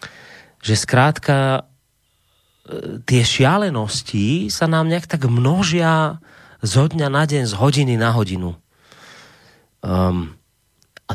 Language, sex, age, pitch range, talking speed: Slovak, male, 30-49, 100-135 Hz, 100 wpm